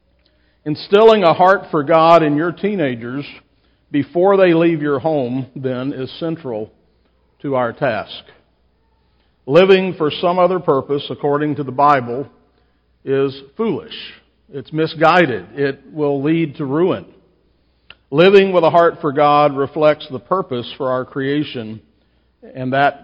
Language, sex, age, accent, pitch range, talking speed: English, male, 50-69, American, 125-160 Hz, 135 wpm